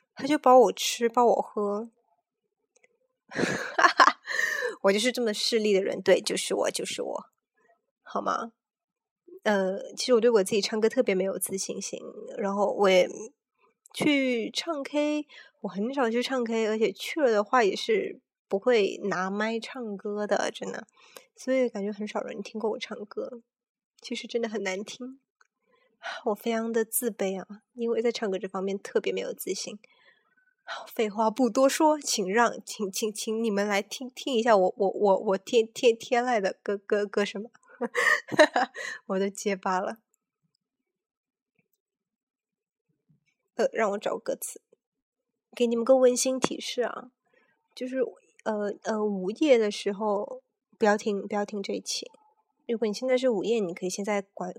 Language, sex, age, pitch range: Chinese, female, 20-39, 205-260 Hz